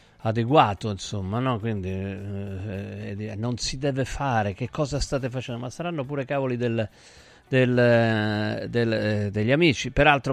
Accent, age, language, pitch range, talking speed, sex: native, 50-69, Italian, 105-130 Hz, 150 wpm, male